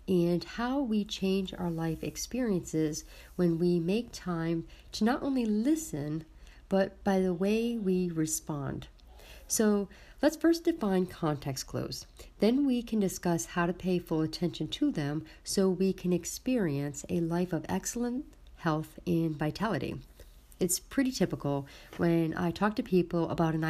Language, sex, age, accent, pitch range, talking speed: English, female, 50-69, American, 155-195 Hz, 150 wpm